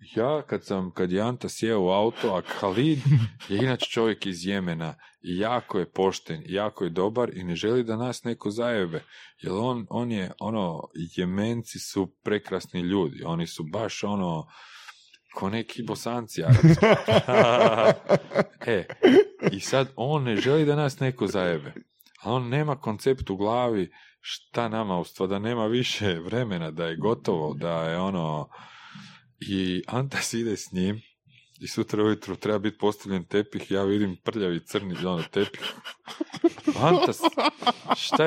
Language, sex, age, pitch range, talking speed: Croatian, male, 40-59, 95-130 Hz, 150 wpm